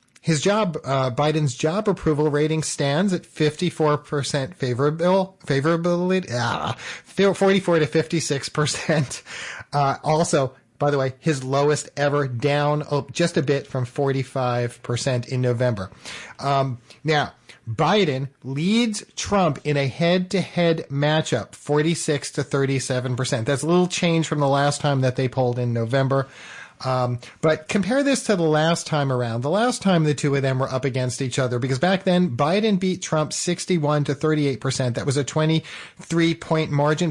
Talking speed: 160 wpm